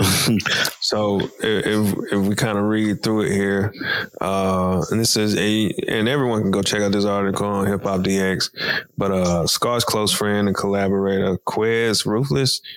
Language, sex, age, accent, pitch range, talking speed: English, male, 20-39, American, 95-105 Hz, 170 wpm